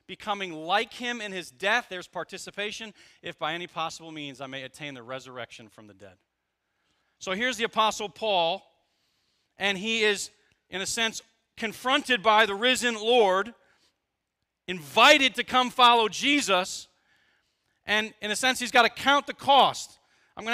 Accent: American